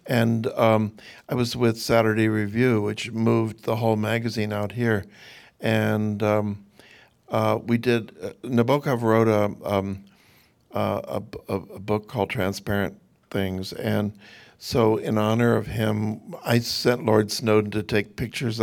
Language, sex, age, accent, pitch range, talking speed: English, male, 60-79, American, 110-135 Hz, 145 wpm